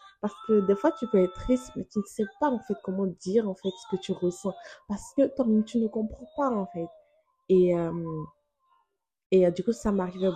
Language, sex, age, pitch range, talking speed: French, female, 20-39, 170-205 Hz, 230 wpm